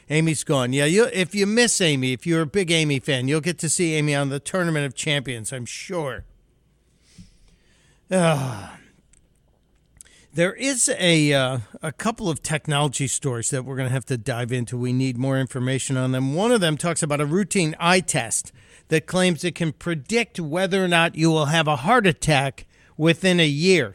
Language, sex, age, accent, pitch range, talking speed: English, male, 50-69, American, 135-180 Hz, 190 wpm